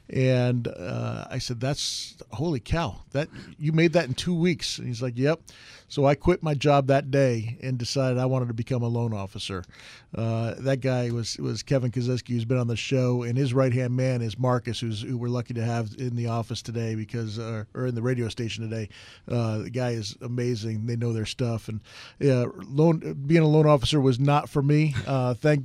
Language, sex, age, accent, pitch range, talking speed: English, male, 40-59, American, 120-135 Hz, 215 wpm